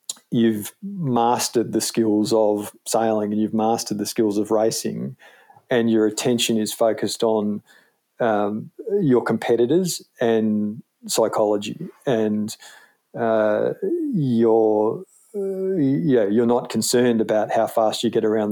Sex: male